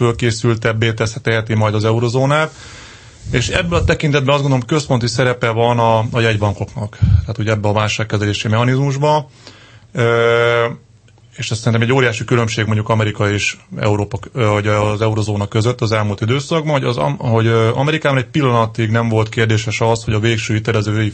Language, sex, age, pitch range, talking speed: Hungarian, male, 30-49, 110-125 Hz, 150 wpm